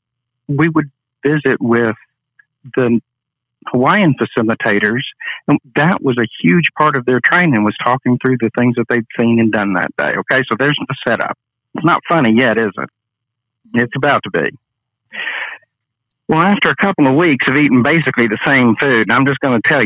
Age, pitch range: 50-69, 110-130 Hz